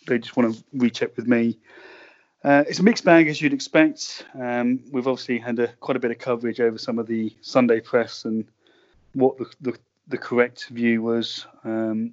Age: 30-49